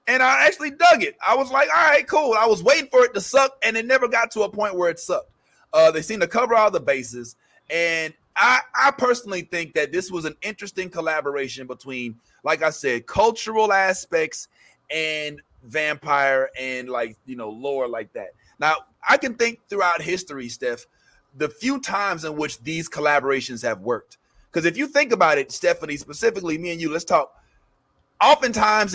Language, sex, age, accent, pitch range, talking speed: English, male, 30-49, American, 150-230 Hz, 190 wpm